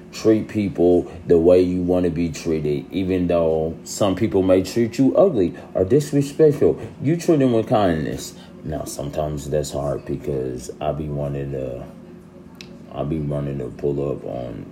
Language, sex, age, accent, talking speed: English, male, 30-49, American, 165 wpm